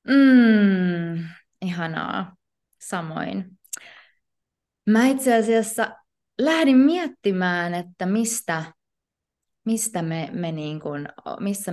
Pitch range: 160-205 Hz